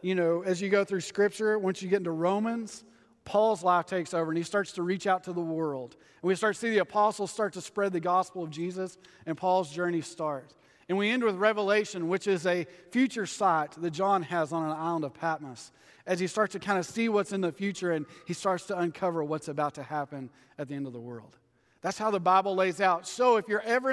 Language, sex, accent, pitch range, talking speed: English, male, American, 165-210 Hz, 245 wpm